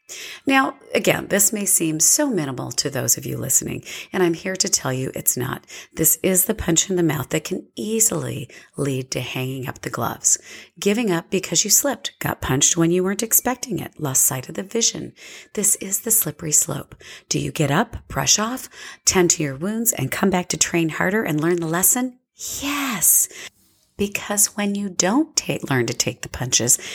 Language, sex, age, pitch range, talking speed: English, female, 40-59, 160-235 Hz, 200 wpm